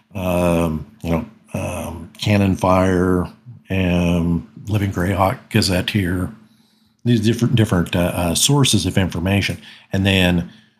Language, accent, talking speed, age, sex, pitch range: English, American, 115 wpm, 50-69, male, 90-110 Hz